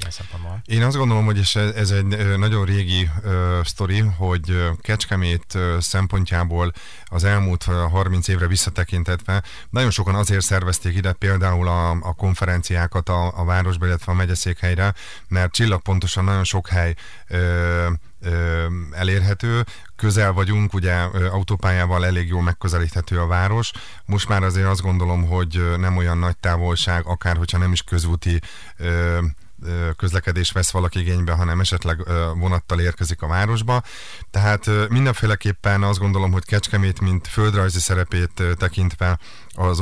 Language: Hungarian